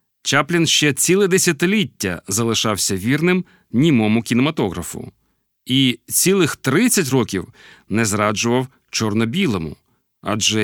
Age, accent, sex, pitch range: 40-59, native, male, 105-160 Hz